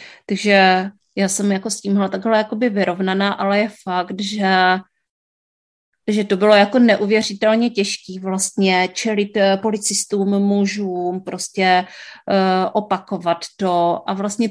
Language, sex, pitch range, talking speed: Czech, female, 195-245 Hz, 120 wpm